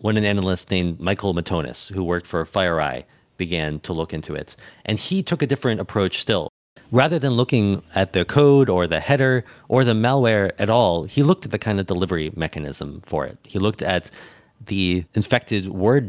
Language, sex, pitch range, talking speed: English, male, 85-110 Hz, 195 wpm